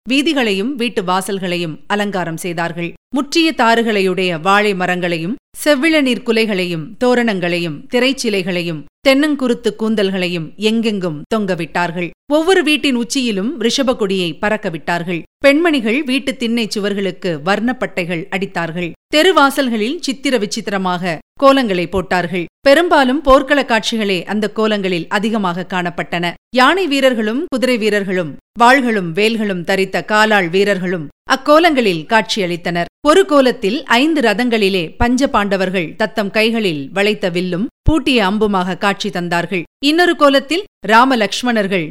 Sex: female